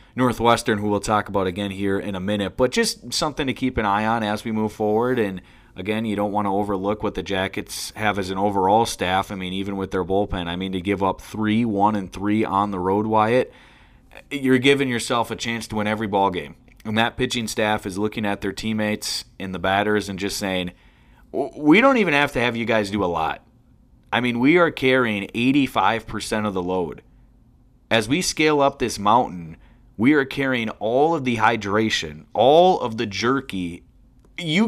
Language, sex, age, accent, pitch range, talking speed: English, male, 30-49, American, 100-135 Hz, 210 wpm